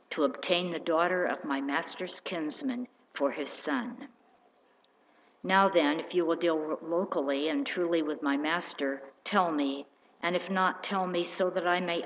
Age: 60-79